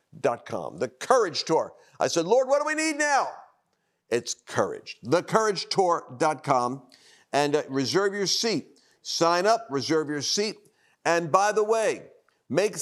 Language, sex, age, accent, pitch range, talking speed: English, male, 50-69, American, 130-190 Hz, 135 wpm